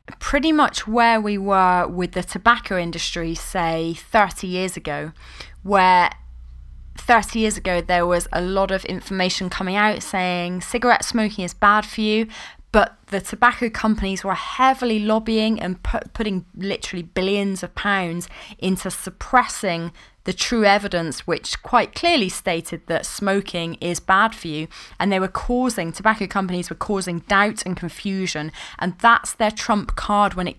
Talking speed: 155 wpm